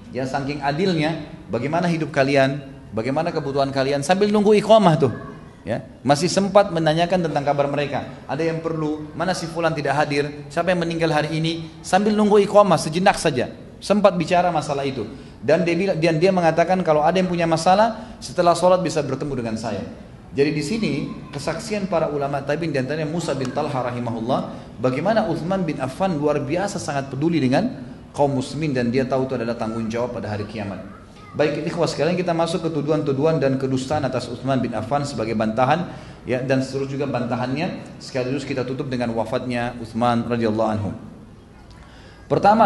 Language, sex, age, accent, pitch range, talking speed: Indonesian, male, 30-49, native, 130-165 Hz, 170 wpm